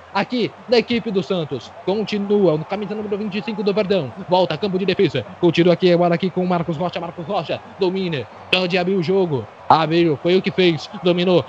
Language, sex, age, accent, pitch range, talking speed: Portuguese, male, 20-39, Brazilian, 180-260 Hz, 190 wpm